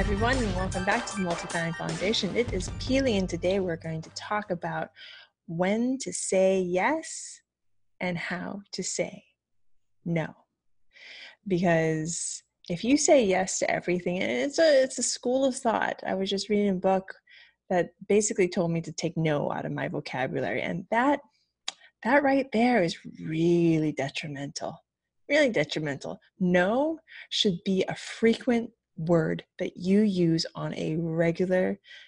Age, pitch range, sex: 20-39, 165-225 Hz, female